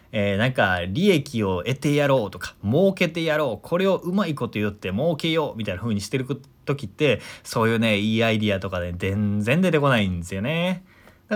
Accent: native